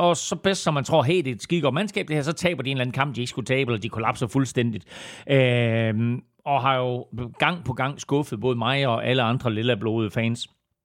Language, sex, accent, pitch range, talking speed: Danish, male, native, 120-150 Hz, 240 wpm